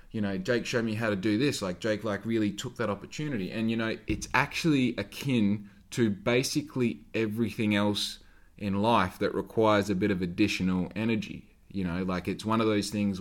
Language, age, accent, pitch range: English, 20-39, Australian, 95-115 Hz